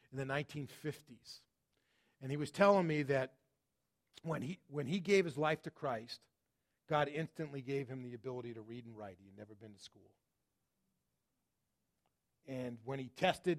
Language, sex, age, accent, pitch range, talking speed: English, male, 40-59, American, 130-160 Hz, 170 wpm